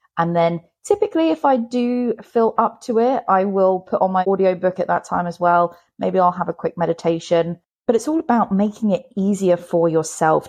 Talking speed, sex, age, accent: 210 wpm, female, 20-39, British